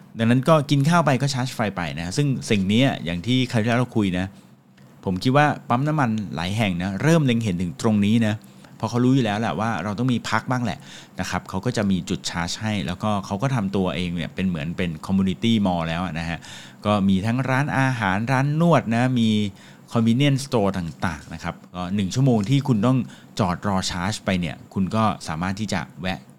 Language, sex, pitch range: English, male, 95-125 Hz